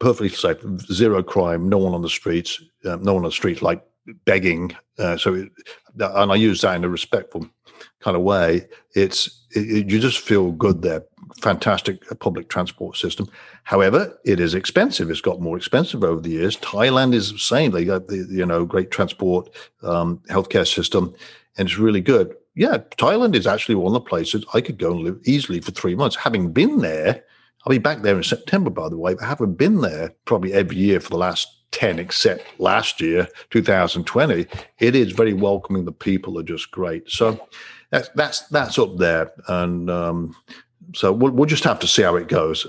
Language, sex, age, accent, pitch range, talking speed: English, male, 50-69, British, 90-120 Hz, 195 wpm